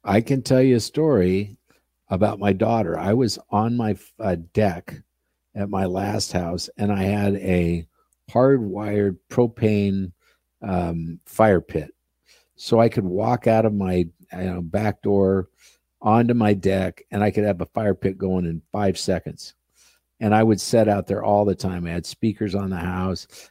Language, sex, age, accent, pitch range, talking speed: English, male, 50-69, American, 95-115 Hz, 175 wpm